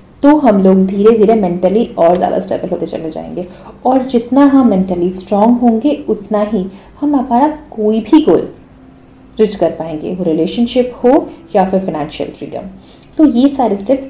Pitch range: 190-260 Hz